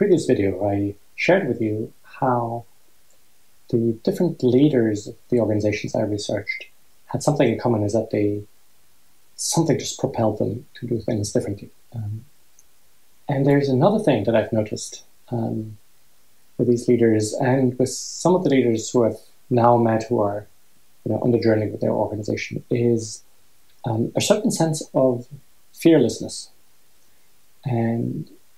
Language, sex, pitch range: English, male, 110-135 Hz